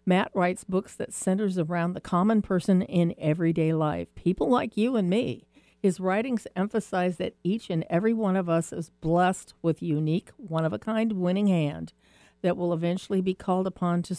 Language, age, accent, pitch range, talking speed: English, 50-69, American, 165-195 Hz, 175 wpm